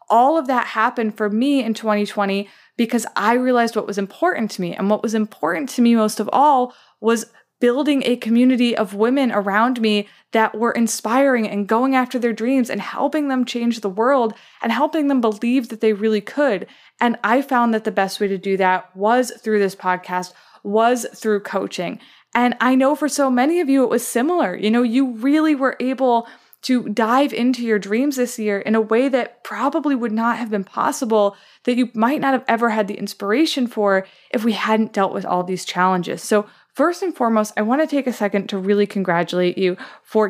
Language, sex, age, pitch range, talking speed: English, female, 20-39, 205-255 Hz, 205 wpm